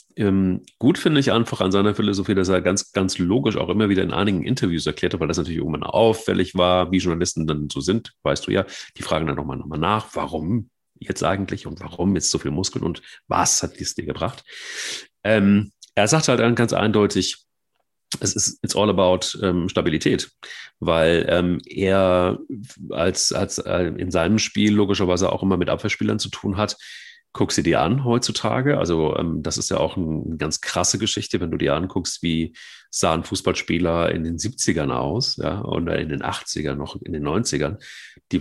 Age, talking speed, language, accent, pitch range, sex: 40-59, 195 wpm, German, German, 85-105 Hz, male